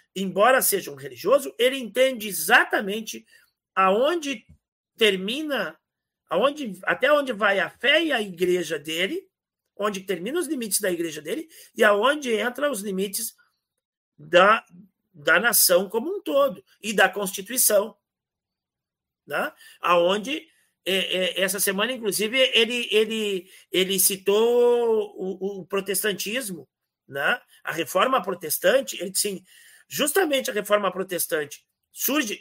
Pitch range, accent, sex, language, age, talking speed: 185-260 Hz, Brazilian, male, Portuguese, 50-69, 125 wpm